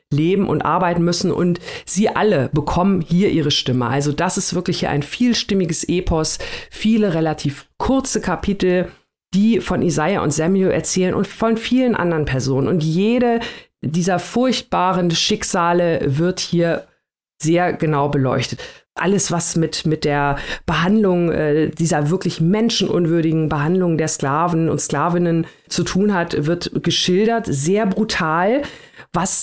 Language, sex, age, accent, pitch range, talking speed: German, female, 40-59, German, 155-190 Hz, 135 wpm